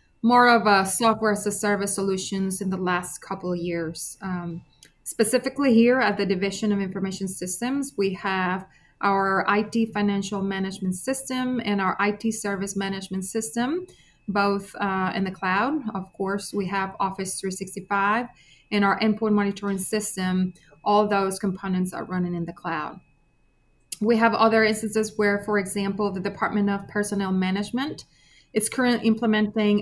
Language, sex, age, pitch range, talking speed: English, female, 30-49, 190-220 Hz, 150 wpm